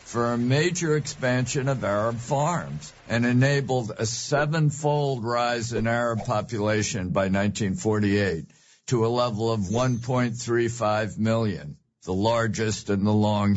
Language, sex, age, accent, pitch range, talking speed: English, male, 60-79, American, 105-140 Hz, 125 wpm